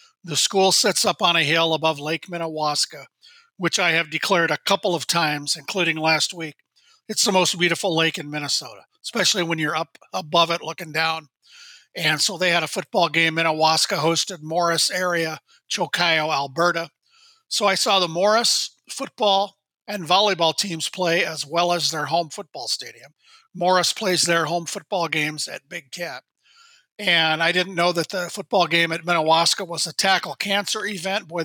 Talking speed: 175 wpm